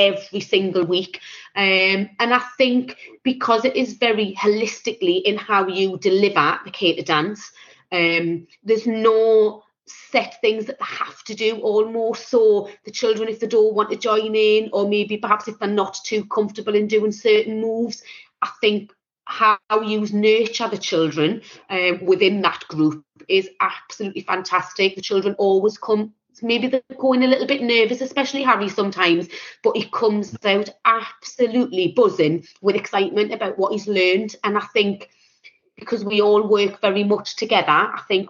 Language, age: English, 30-49